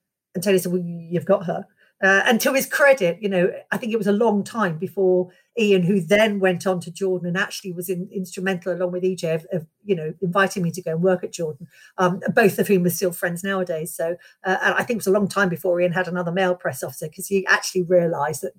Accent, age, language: British, 50-69, English